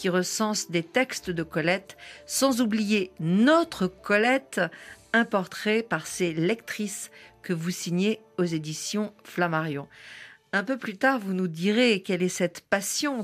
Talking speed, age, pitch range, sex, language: 145 wpm, 50-69, 170-220 Hz, female, French